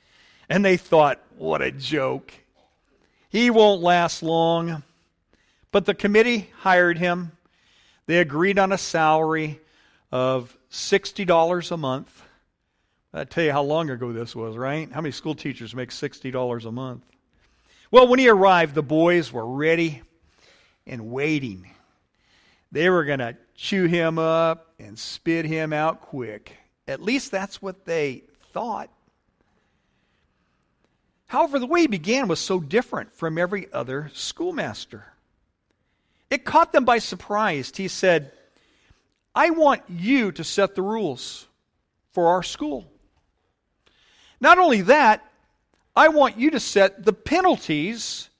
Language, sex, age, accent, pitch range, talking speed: English, male, 50-69, American, 145-215 Hz, 135 wpm